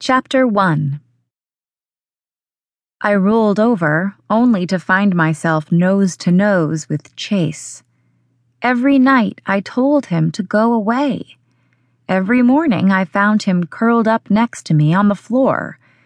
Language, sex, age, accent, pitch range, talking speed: English, female, 20-39, American, 150-205 Hz, 125 wpm